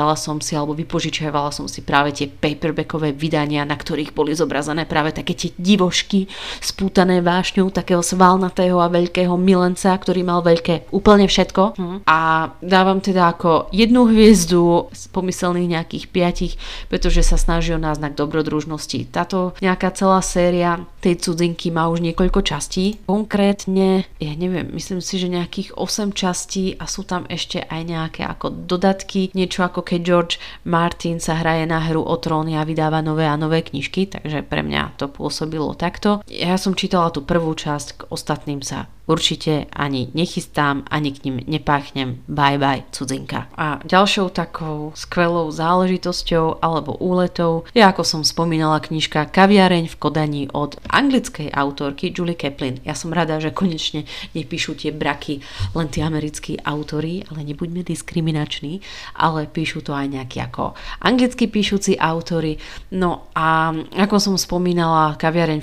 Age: 30-49